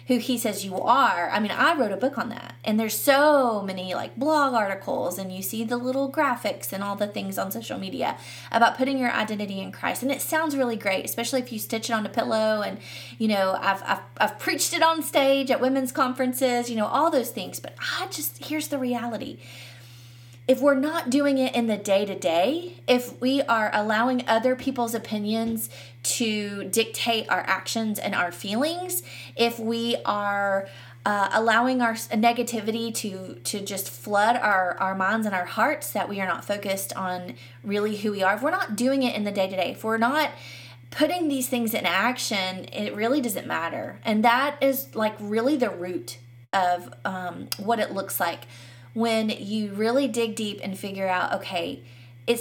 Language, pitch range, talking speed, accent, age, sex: English, 185-245 Hz, 195 wpm, American, 20-39, female